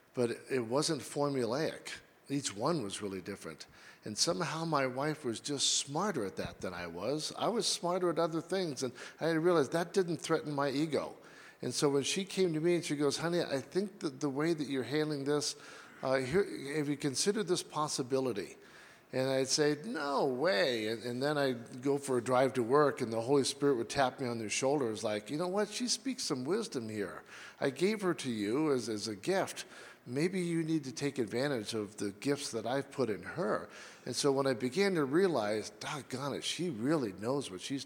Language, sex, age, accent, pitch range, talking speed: English, male, 50-69, American, 115-155 Hz, 210 wpm